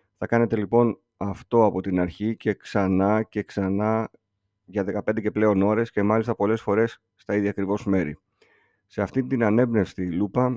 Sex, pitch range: male, 95-120 Hz